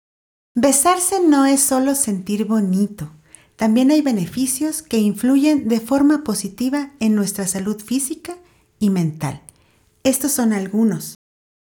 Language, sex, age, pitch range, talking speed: Spanish, female, 40-59, 190-270 Hz, 120 wpm